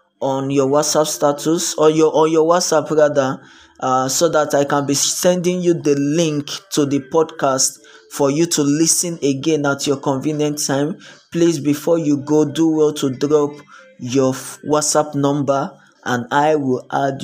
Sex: male